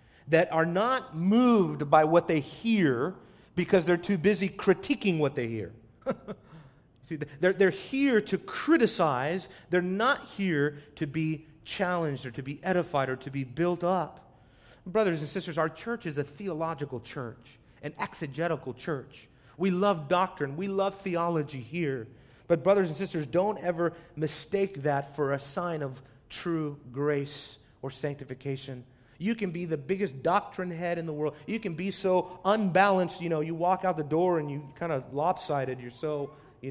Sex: male